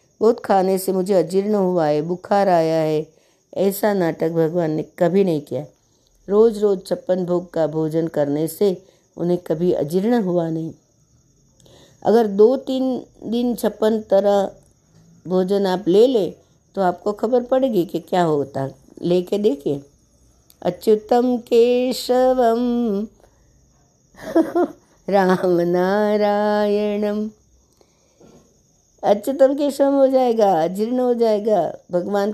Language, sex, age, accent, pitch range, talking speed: Hindi, female, 60-79, native, 170-225 Hz, 115 wpm